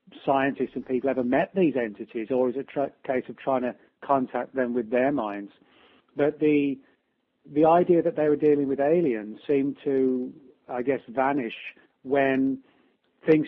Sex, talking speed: male, 165 wpm